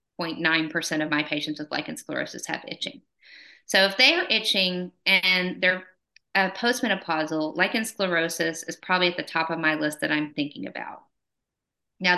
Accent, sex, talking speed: American, female, 165 wpm